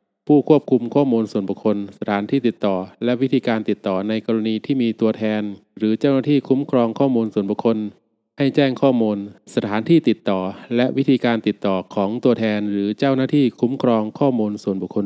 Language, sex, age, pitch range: Thai, male, 20-39, 105-130 Hz